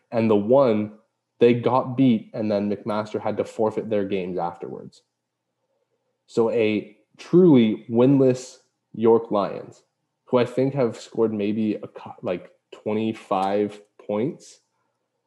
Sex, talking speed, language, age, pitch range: male, 120 wpm, English, 20-39, 95-125 Hz